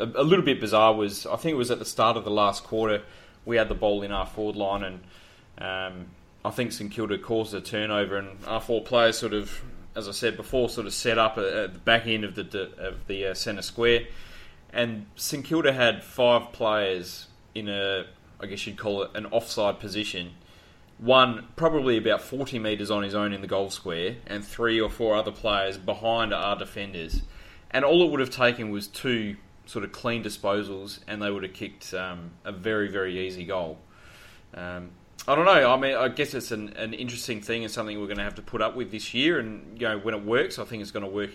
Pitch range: 95-115 Hz